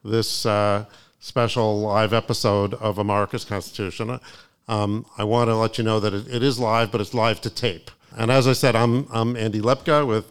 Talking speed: 200 wpm